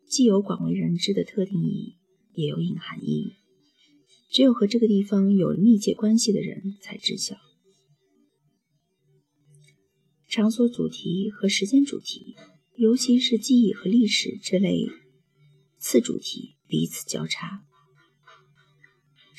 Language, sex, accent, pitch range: Chinese, female, native, 145-215 Hz